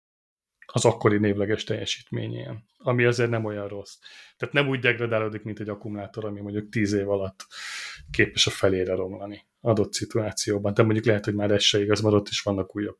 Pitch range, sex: 110-130 Hz, male